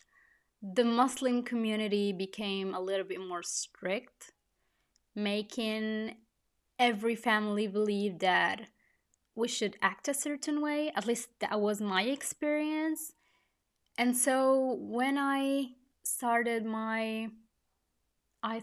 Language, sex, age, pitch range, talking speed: Italian, female, 20-39, 205-265 Hz, 105 wpm